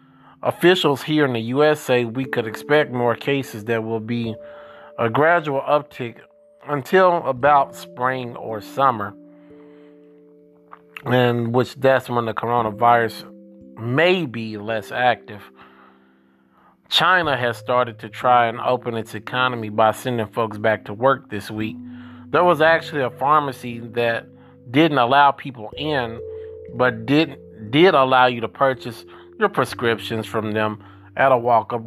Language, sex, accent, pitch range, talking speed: English, male, American, 110-145 Hz, 135 wpm